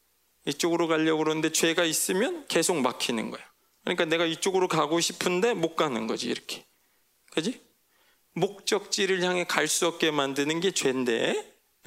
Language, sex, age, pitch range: Korean, male, 40-59, 160-205 Hz